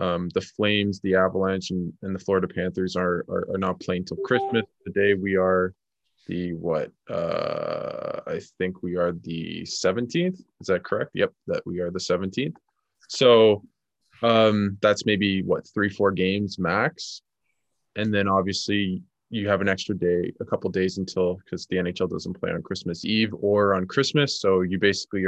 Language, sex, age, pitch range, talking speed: English, male, 20-39, 90-100 Hz, 175 wpm